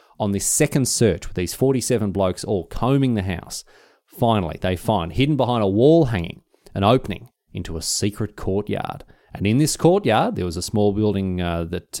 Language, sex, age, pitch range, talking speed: English, male, 30-49, 95-130 Hz, 185 wpm